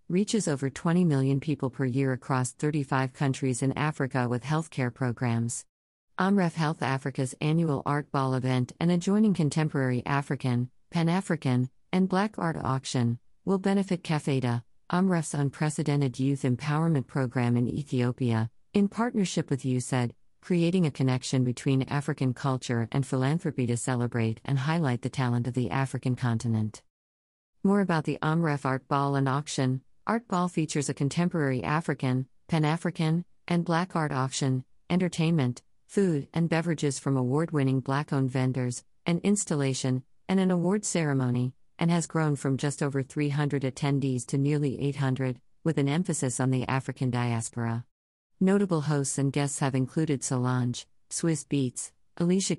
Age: 50-69